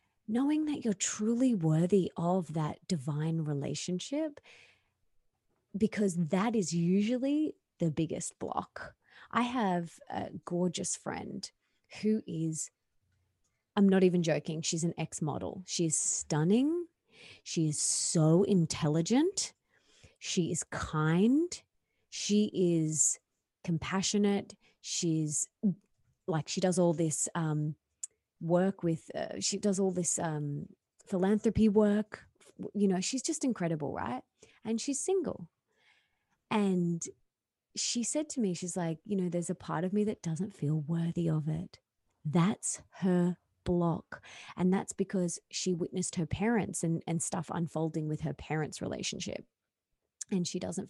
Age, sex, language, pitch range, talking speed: 30-49, female, English, 165-210 Hz, 130 wpm